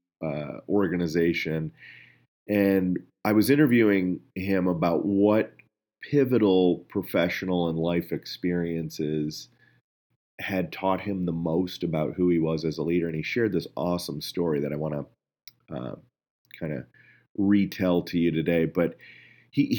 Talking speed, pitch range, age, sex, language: 130 wpm, 80-100 Hz, 30-49, male, English